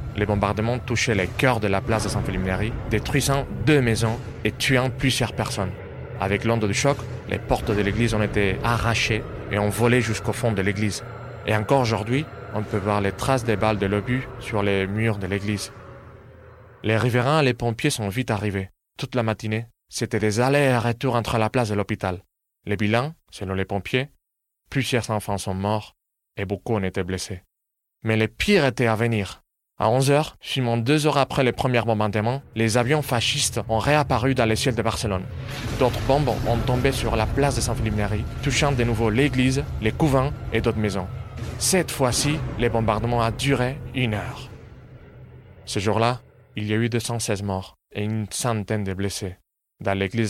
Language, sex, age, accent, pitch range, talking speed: French, male, 30-49, French, 105-125 Hz, 185 wpm